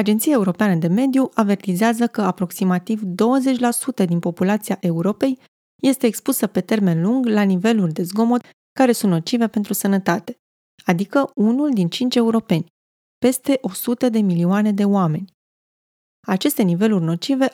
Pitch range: 185-240 Hz